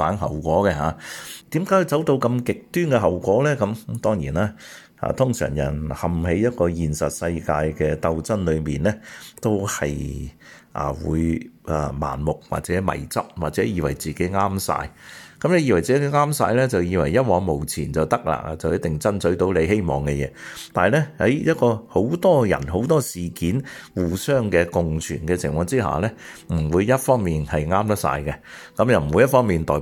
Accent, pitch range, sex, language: native, 80-120 Hz, male, Chinese